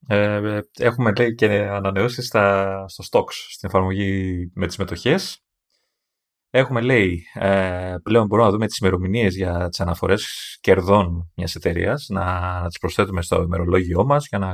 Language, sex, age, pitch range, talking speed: Greek, male, 30-49, 90-115 Hz, 145 wpm